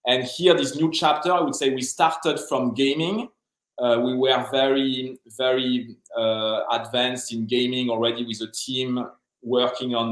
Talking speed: 160 wpm